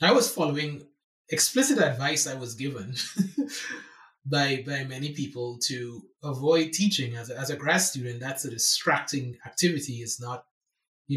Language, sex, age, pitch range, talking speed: English, male, 20-39, 130-180 Hz, 150 wpm